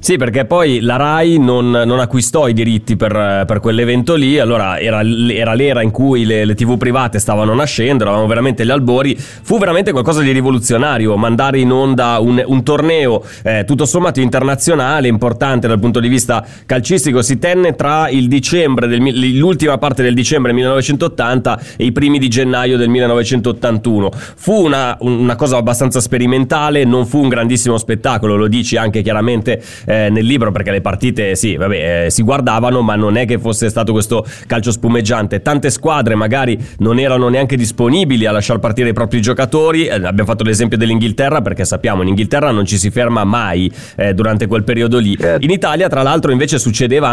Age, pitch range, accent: 20-39, 115-135 Hz, native